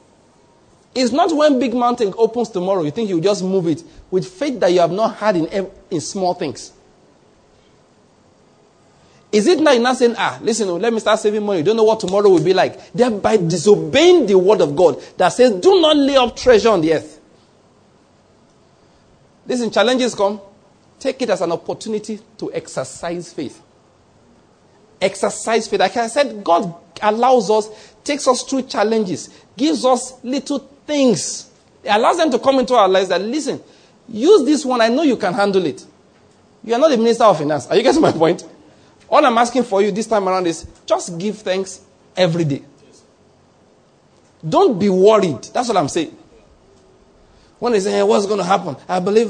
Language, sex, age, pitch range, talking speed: English, male, 40-59, 190-250 Hz, 185 wpm